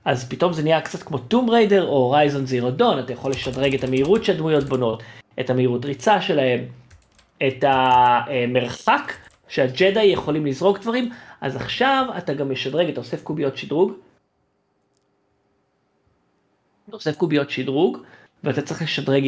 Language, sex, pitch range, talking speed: Hebrew, male, 135-195 Hz, 135 wpm